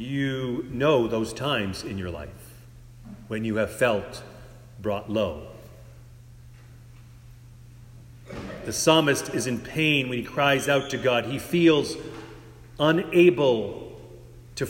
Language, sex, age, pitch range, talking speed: English, male, 40-59, 120-145 Hz, 115 wpm